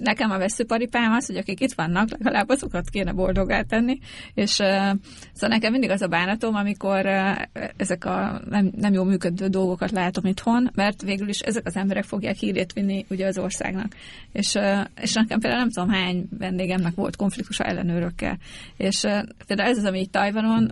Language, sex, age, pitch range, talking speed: Hungarian, female, 30-49, 185-215 Hz, 170 wpm